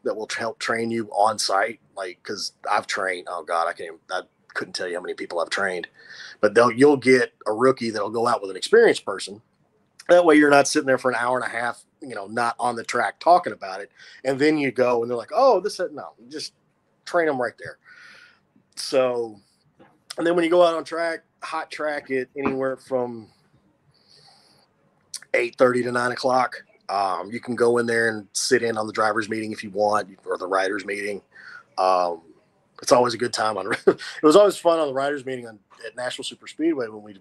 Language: English